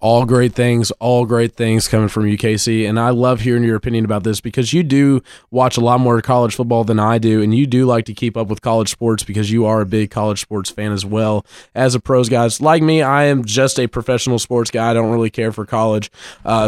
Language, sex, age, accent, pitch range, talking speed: English, male, 20-39, American, 115-170 Hz, 250 wpm